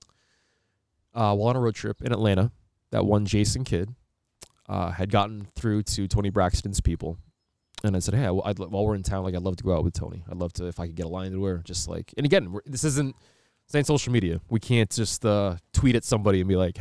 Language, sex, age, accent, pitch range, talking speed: English, male, 20-39, American, 95-120 Hz, 245 wpm